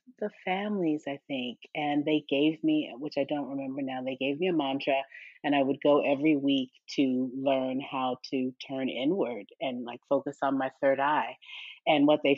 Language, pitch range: English, 135-165 Hz